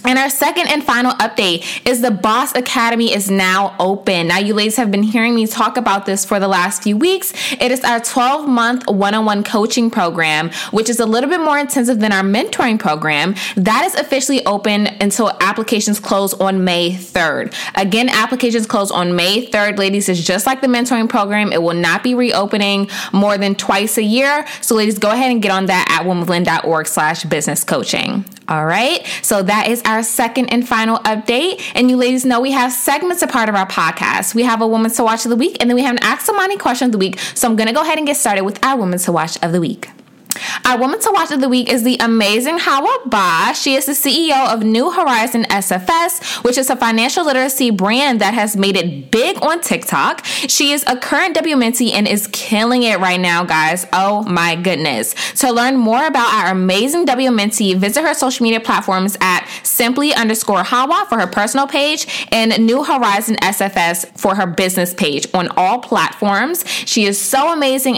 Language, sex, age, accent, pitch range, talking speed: English, female, 20-39, American, 195-255 Hz, 205 wpm